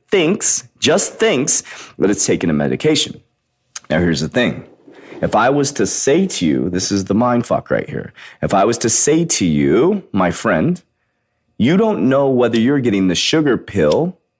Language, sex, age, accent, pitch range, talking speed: English, male, 30-49, American, 110-155 Hz, 185 wpm